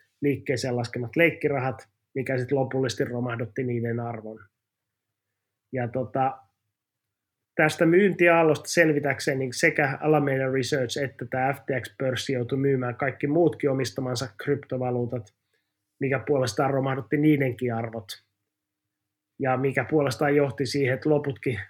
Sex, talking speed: male, 105 wpm